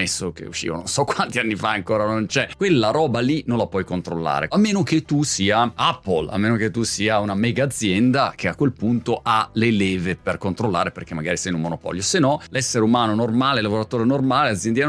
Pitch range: 100-145 Hz